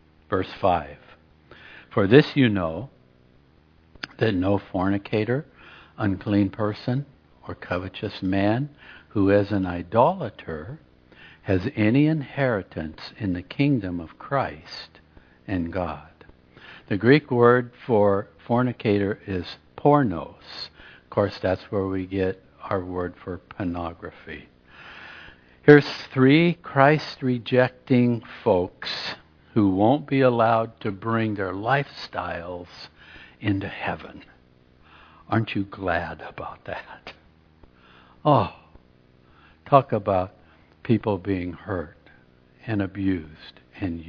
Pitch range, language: 80-110 Hz, English